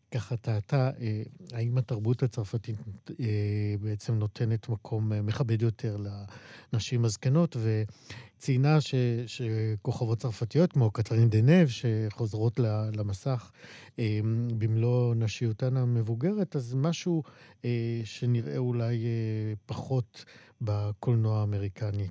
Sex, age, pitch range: male, 50-69, 105-130 Hz